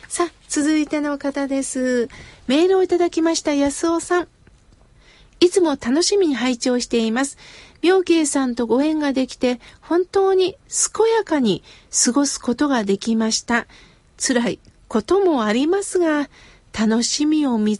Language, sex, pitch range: Japanese, female, 245-325 Hz